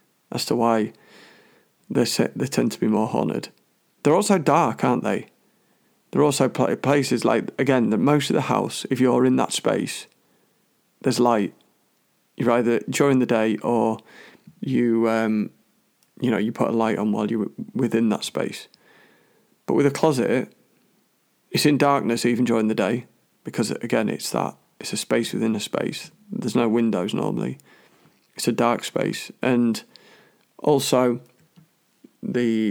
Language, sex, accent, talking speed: English, male, British, 150 wpm